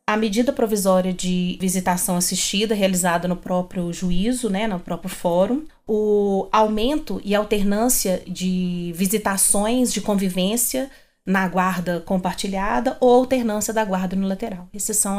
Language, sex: Portuguese, female